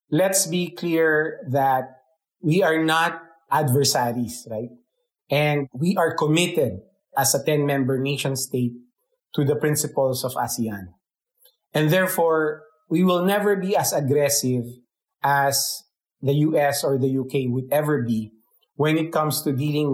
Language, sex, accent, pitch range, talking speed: English, male, Filipino, 135-170 Hz, 130 wpm